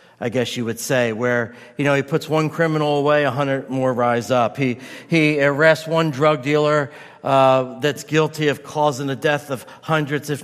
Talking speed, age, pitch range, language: 195 wpm, 50-69, 130-165 Hz, English